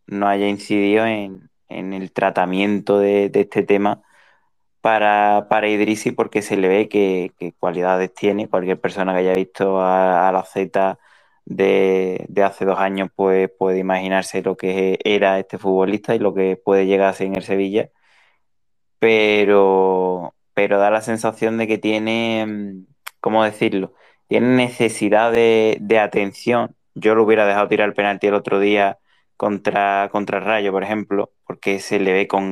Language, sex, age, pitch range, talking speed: Spanish, male, 20-39, 95-110 Hz, 165 wpm